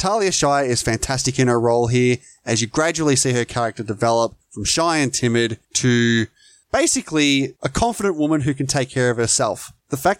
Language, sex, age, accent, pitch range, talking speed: English, male, 20-39, Australian, 125-165 Hz, 190 wpm